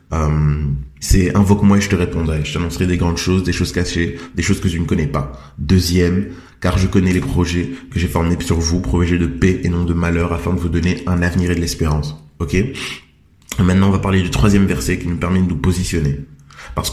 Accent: French